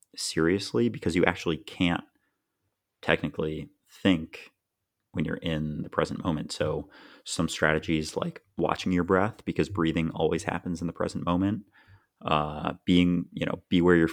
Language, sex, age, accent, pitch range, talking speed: English, male, 30-49, American, 80-95 Hz, 150 wpm